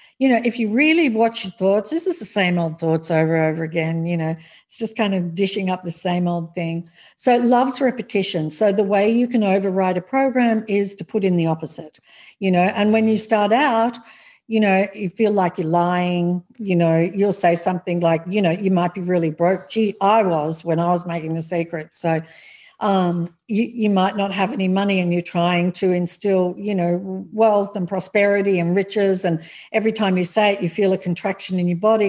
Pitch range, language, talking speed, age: 175-220 Hz, English, 220 wpm, 50-69